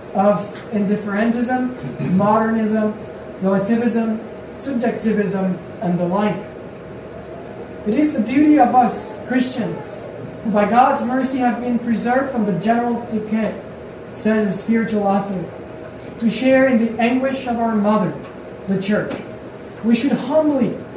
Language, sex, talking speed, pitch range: English, male, 125 wpm, 195-240 Hz